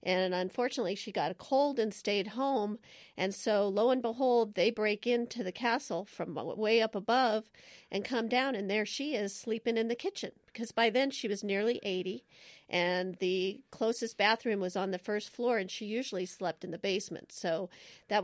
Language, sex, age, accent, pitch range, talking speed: English, female, 40-59, American, 195-230 Hz, 195 wpm